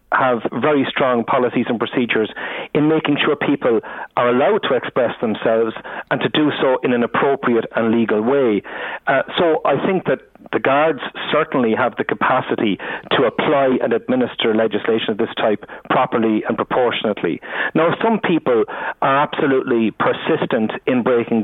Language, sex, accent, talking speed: English, male, Irish, 155 wpm